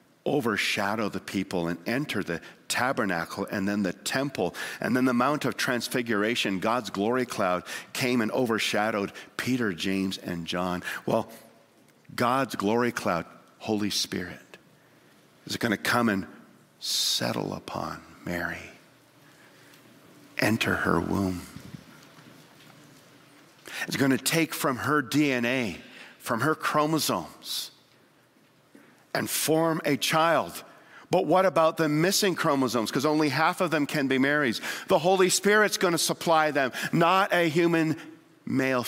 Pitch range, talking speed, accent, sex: 125-200 Hz, 125 wpm, American, male